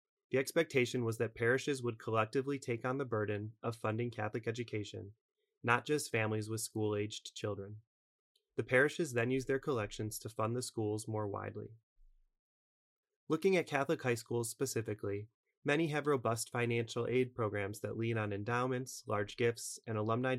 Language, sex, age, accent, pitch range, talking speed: English, male, 20-39, American, 105-125 Hz, 155 wpm